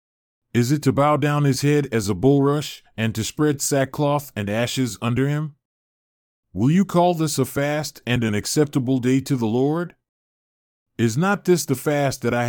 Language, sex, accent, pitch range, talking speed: English, male, American, 115-145 Hz, 185 wpm